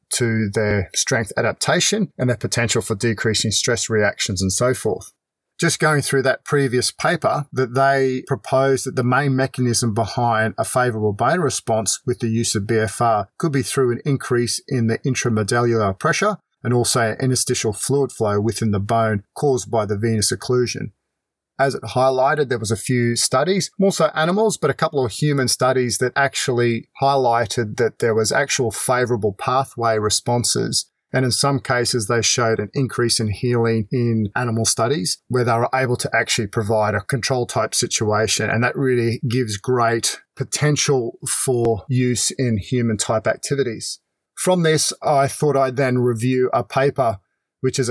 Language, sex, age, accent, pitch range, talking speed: English, male, 40-59, Australian, 115-135 Hz, 165 wpm